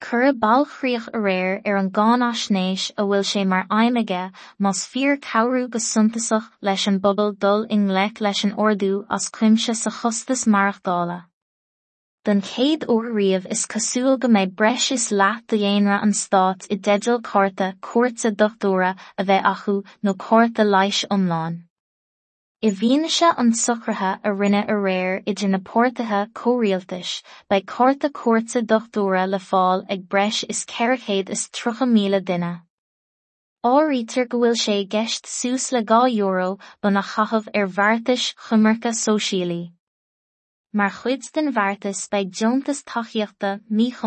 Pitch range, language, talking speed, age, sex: 195-235 Hz, English, 125 wpm, 20-39, female